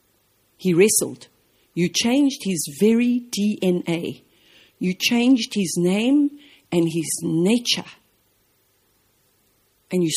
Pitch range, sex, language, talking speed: 165-220 Hz, female, English, 95 wpm